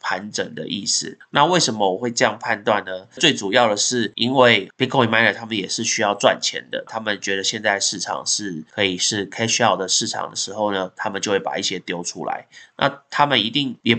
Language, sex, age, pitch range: Chinese, male, 20-39, 100-120 Hz